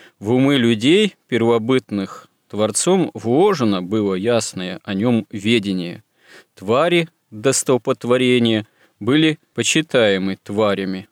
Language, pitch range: Russian, 105-130 Hz